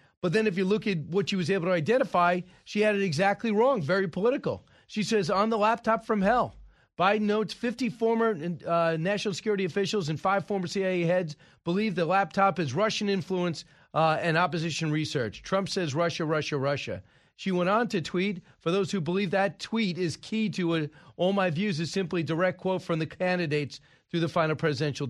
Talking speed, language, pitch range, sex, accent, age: 200 wpm, English, 145-195 Hz, male, American, 40-59